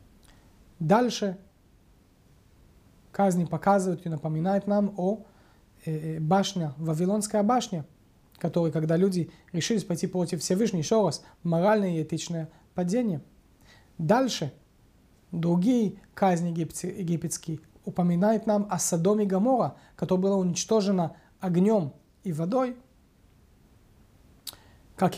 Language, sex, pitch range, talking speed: Russian, male, 160-200 Hz, 95 wpm